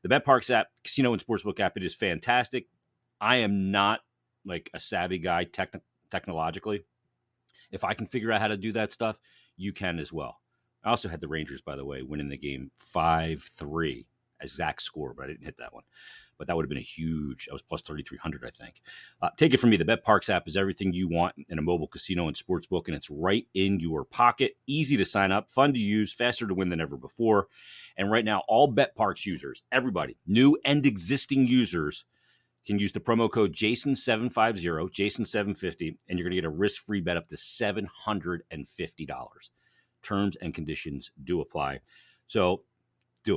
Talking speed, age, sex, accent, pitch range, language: 195 wpm, 40-59, male, American, 85-115 Hz, English